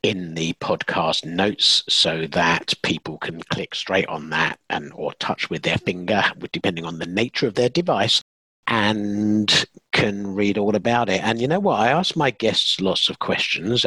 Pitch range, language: 90-120 Hz, English